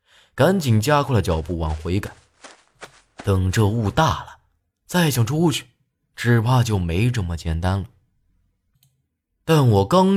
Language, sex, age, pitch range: Chinese, male, 30-49, 85-130 Hz